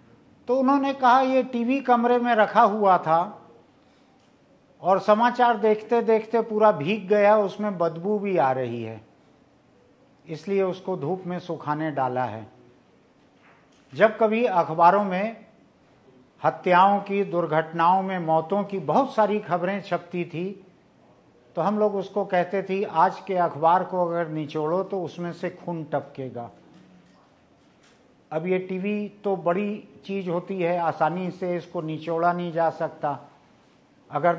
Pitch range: 160-200 Hz